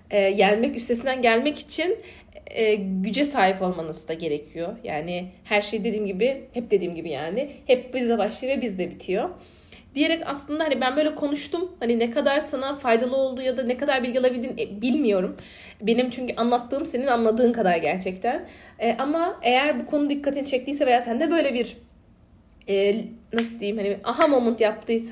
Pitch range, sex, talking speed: 220-280 Hz, female, 170 wpm